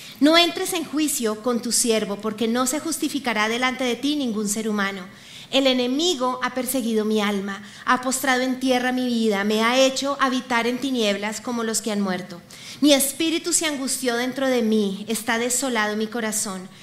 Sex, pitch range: female, 210-265 Hz